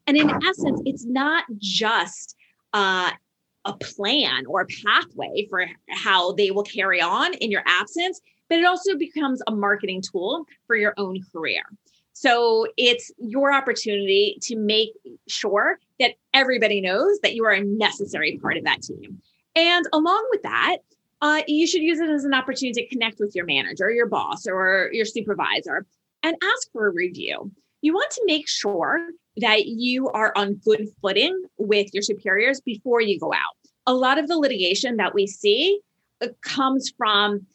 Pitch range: 205-310 Hz